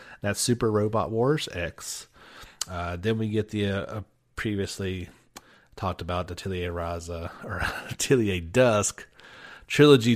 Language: English